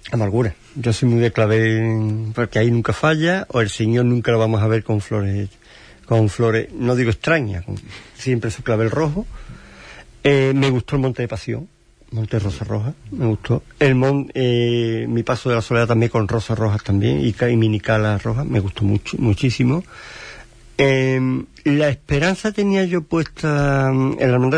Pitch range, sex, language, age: 115-160 Hz, male, Spanish, 50-69